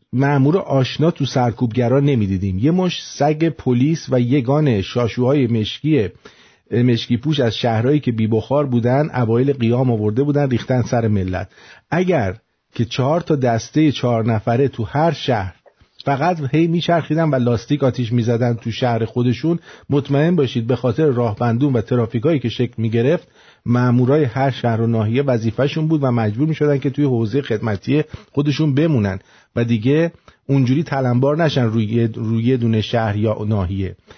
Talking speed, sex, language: 150 wpm, male, English